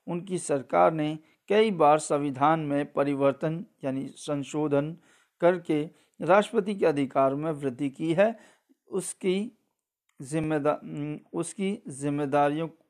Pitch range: 145-175 Hz